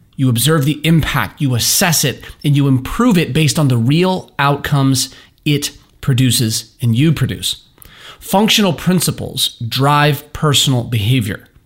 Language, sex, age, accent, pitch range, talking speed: English, male, 30-49, American, 120-155 Hz, 135 wpm